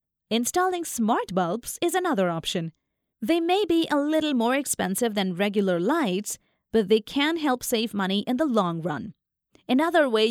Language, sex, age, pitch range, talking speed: English, female, 30-49, 200-315 Hz, 165 wpm